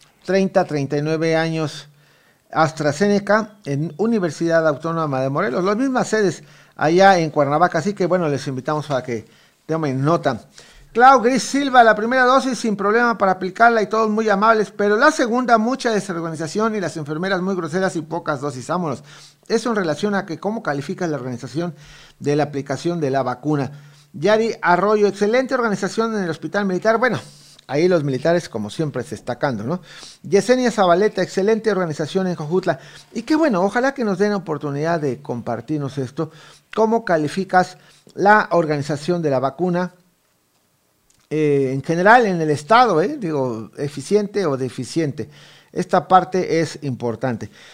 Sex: male